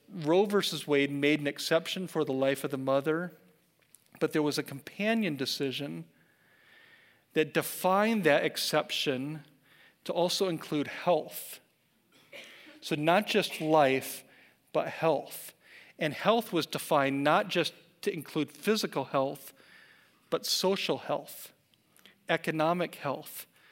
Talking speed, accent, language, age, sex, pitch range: 120 wpm, American, English, 40-59, male, 140-175 Hz